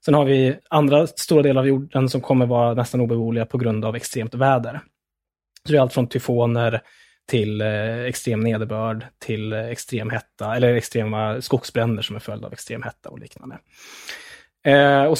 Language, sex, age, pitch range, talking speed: English, male, 20-39, 115-145 Hz, 165 wpm